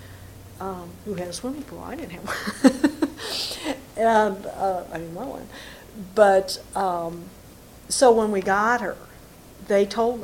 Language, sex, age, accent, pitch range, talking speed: English, female, 50-69, American, 180-215 Hz, 145 wpm